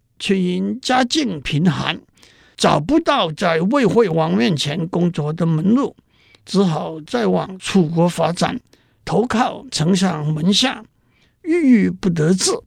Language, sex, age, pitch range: Chinese, male, 50-69, 165-225 Hz